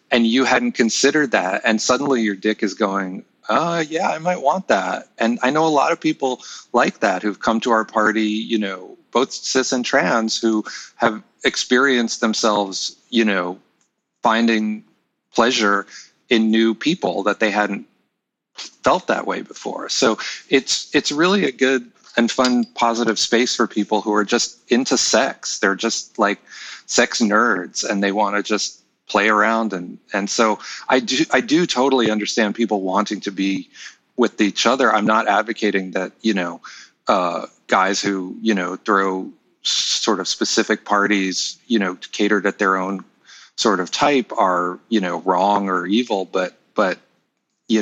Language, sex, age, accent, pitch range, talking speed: English, male, 40-59, American, 100-115 Hz, 170 wpm